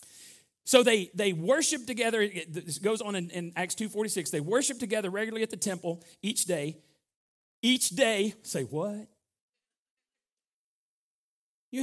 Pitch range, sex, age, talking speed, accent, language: 165-230 Hz, male, 40-59, 130 wpm, American, English